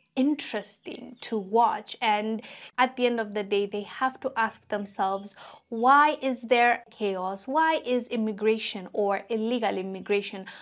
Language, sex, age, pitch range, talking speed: English, female, 20-39, 210-285 Hz, 140 wpm